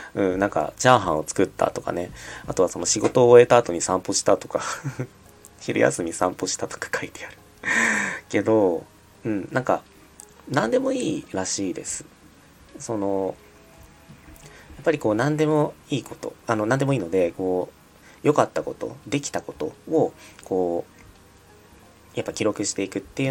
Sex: male